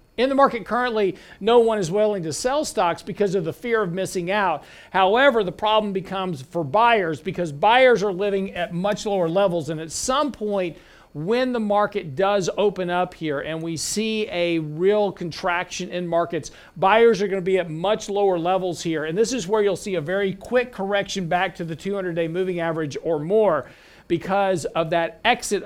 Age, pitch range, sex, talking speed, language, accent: 50-69, 170-205 Hz, male, 195 wpm, English, American